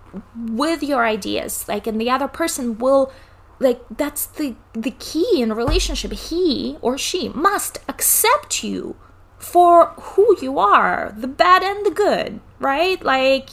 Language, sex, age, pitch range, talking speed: English, female, 20-39, 235-300 Hz, 150 wpm